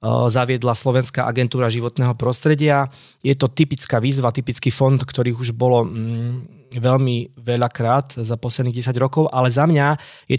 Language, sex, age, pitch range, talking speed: Slovak, male, 20-39, 120-135 Hz, 145 wpm